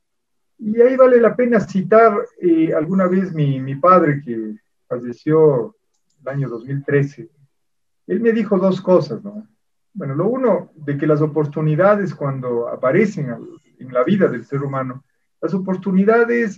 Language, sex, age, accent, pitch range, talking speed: Spanish, male, 50-69, Mexican, 145-200 Hz, 150 wpm